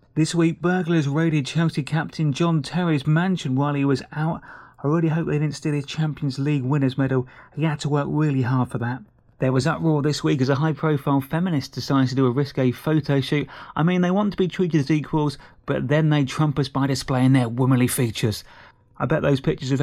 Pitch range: 135-165 Hz